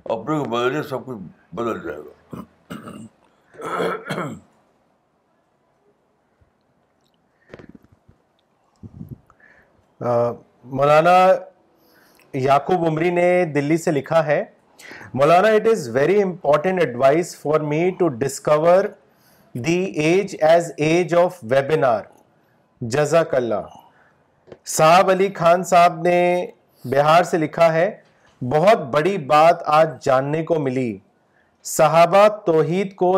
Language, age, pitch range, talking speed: Urdu, 60-79, 145-185 Hz, 90 wpm